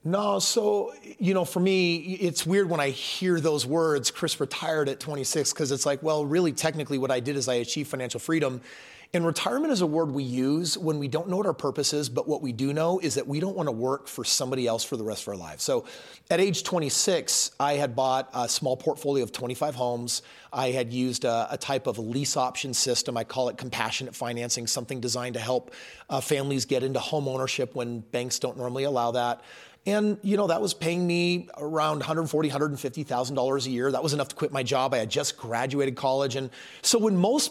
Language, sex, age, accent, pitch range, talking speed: English, male, 30-49, American, 130-165 Hz, 220 wpm